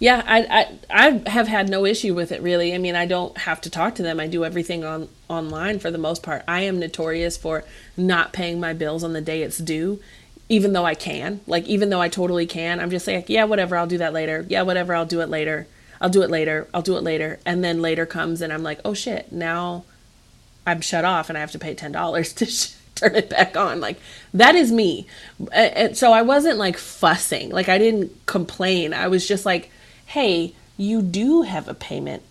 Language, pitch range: English, 165-205 Hz